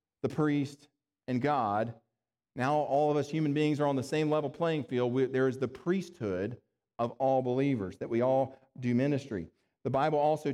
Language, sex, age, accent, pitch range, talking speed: English, male, 40-59, American, 125-155 Hz, 190 wpm